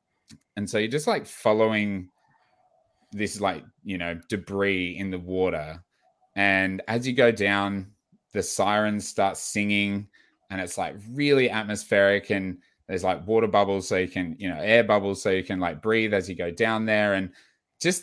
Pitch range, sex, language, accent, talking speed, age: 95-115 Hz, male, English, Australian, 175 wpm, 20-39